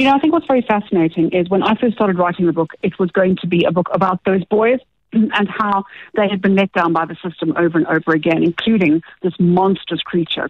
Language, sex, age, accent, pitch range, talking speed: English, female, 40-59, British, 165-195 Hz, 245 wpm